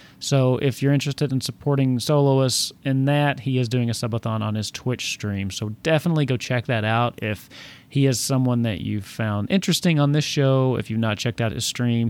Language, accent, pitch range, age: English, American, 110-140 Hz, 30-49